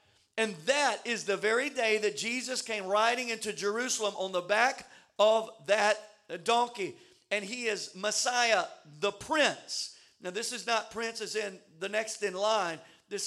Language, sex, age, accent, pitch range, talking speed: English, male, 50-69, American, 200-275 Hz, 165 wpm